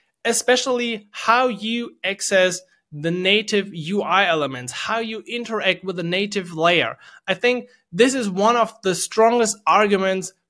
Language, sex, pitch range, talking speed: English, male, 170-225 Hz, 135 wpm